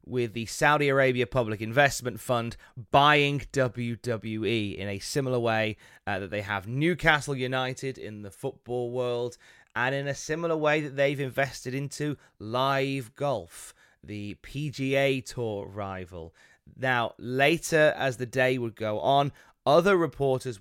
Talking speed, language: 140 wpm, English